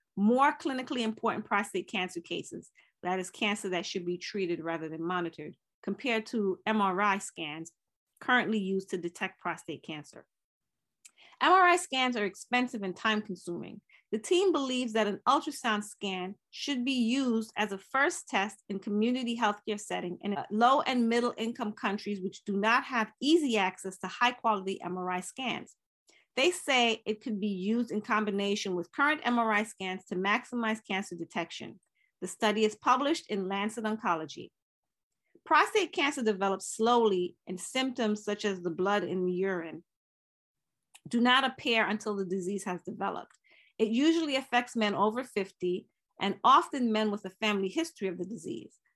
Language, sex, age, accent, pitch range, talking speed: English, female, 30-49, American, 185-240 Hz, 155 wpm